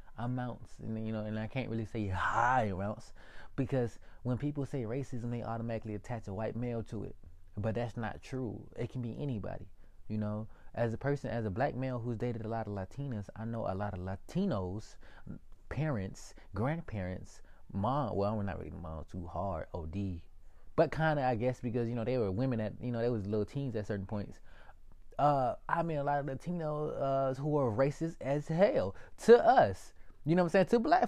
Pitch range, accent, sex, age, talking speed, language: 100-135 Hz, American, male, 20-39, 205 wpm, English